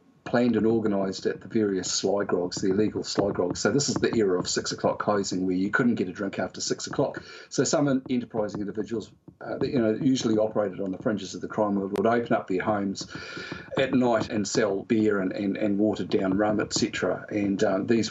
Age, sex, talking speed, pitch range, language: 50-69, male, 220 wpm, 100-115 Hz, English